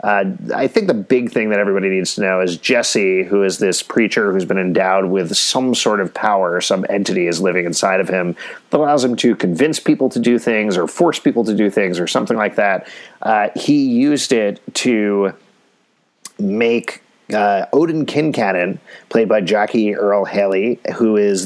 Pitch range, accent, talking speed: 95-125 Hz, American, 185 wpm